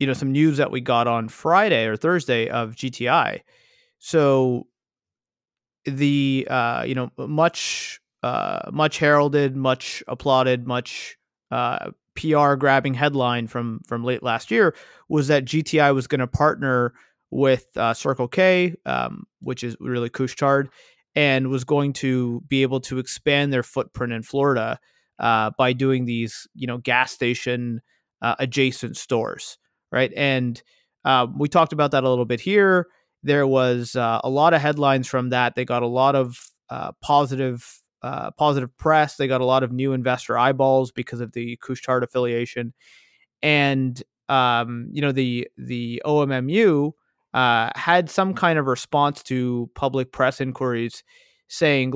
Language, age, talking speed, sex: English, 30-49, 155 wpm, male